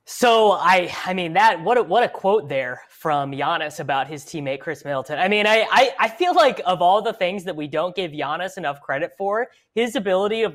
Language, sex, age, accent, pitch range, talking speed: English, female, 20-39, American, 140-185 Hz, 230 wpm